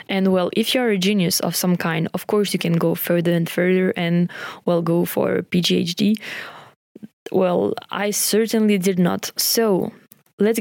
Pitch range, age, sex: 175-195 Hz, 20-39, female